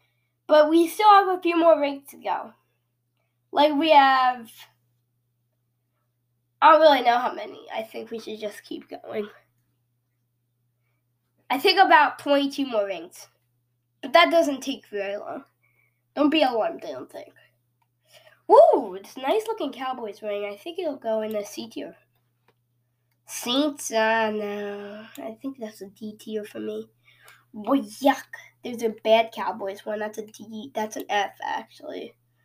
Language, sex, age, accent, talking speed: English, female, 10-29, American, 155 wpm